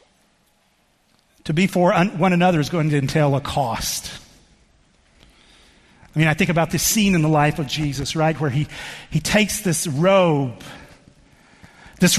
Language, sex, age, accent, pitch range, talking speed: English, male, 50-69, American, 155-200 Hz, 160 wpm